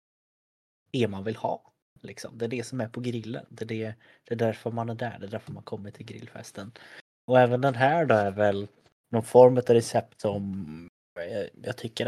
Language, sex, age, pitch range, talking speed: Swedish, male, 20-39, 100-115 Hz, 205 wpm